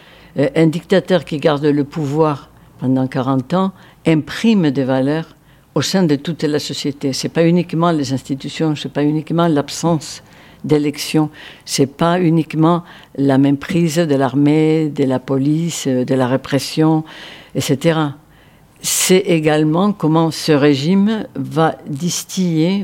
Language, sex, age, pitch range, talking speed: French, female, 60-79, 140-170 Hz, 135 wpm